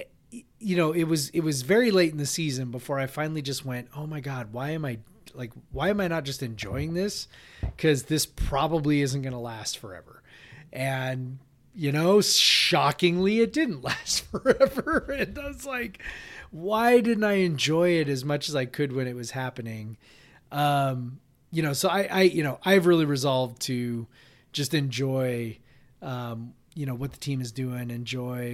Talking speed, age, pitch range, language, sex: 180 wpm, 30-49, 125-155 Hz, English, male